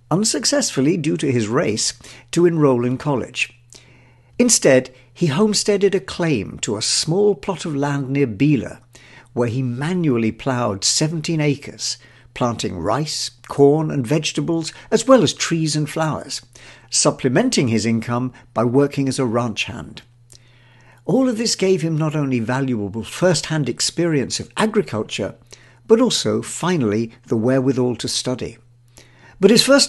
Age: 60-79